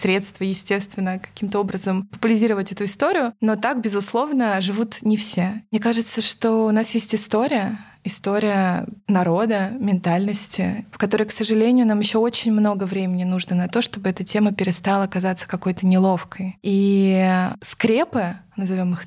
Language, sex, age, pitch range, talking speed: Russian, female, 20-39, 185-215 Hz, 145 wpm